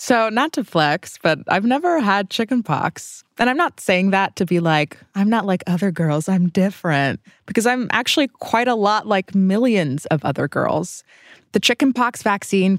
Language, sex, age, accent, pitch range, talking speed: English, female, 20-39, American, 160-215 Hz, 190 wpm